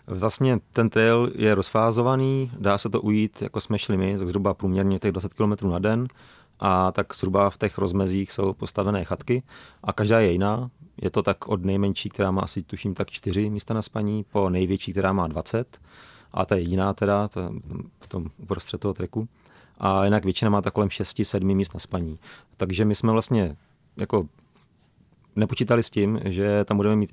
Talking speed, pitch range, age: 190 wpm, 95-110 Hz, 30-49